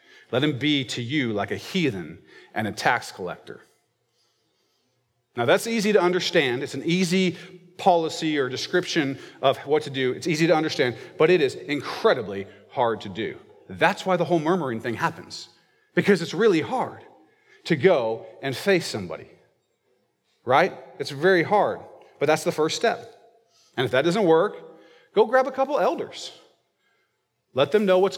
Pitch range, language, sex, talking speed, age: 155-210 Hz, English, male, 165 wpm, 40-59